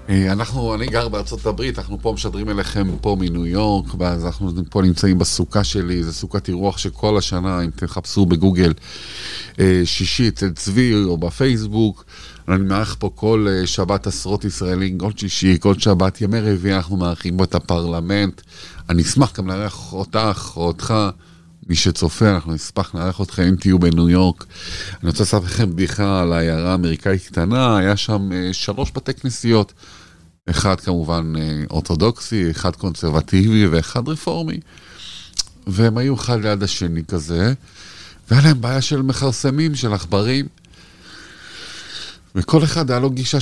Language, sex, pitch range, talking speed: Hebrew, male, 90-120 Hz, 145 wpm